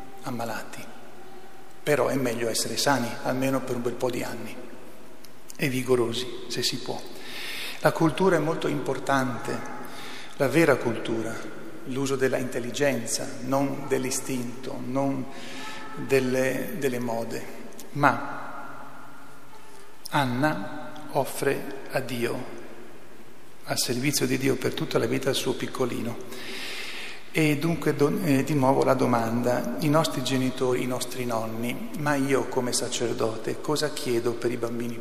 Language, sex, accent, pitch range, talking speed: Italian, male, native, 125-140 Hz, 125 wpm